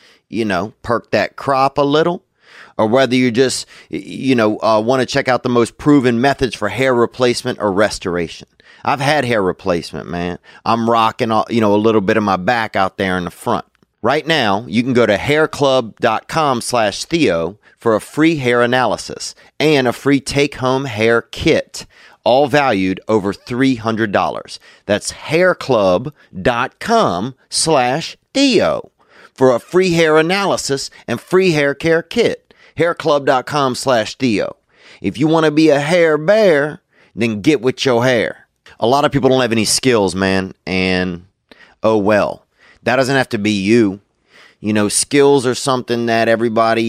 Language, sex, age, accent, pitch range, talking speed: English, male, 30-49, American, 105-140 Hz, 160 wpm